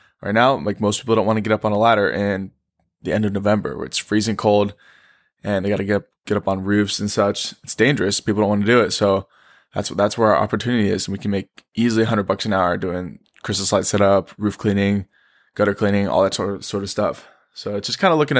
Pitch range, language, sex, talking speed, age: 100-115 Hz, English, male, 255 wpm, 20-39